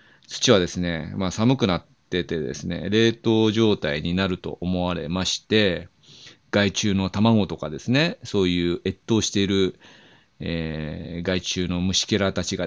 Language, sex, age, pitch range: Japanese, male, 40-59, 90-120 Hz